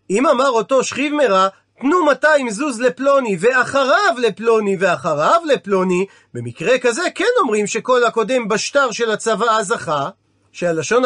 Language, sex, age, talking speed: Hebrew, male, 40-59, 130 wpm